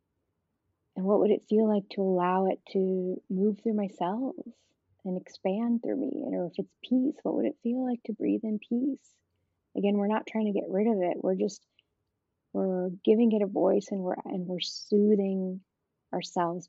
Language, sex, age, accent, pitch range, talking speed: English, female, 30-49, American, 175-210 Hz, 185 wpm